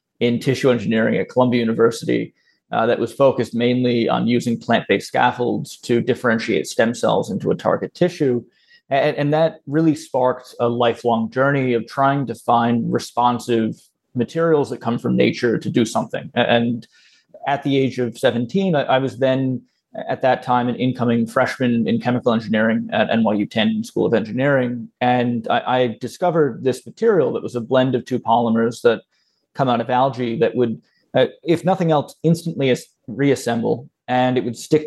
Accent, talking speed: American, 170 wpm